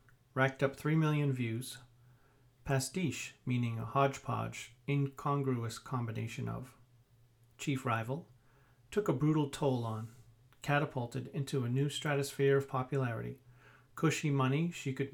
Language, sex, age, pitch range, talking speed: English, male, 40-59, 125-140 Hz, 120 wpm